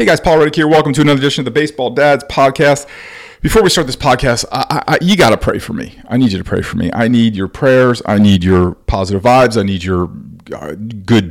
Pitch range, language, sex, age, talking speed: 90-115 Hz, English, male, 40-59, 245 wpm